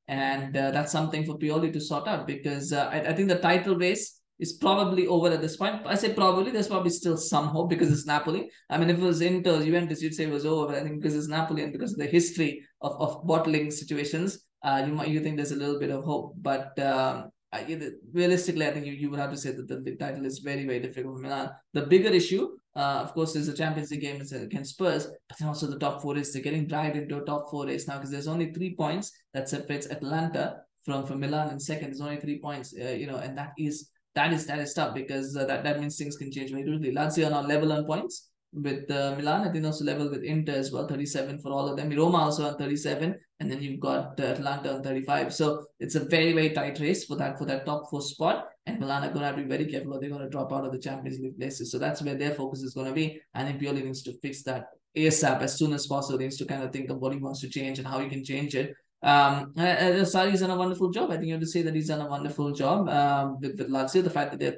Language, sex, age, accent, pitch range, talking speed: English, male, 20-39, Indian, 140-160 Hz, 275 wpm